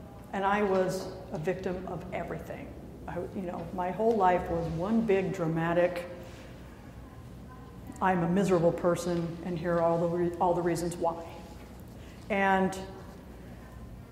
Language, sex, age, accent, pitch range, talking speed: English, female, 50-69, American, 180-235 Hz, 125 wpm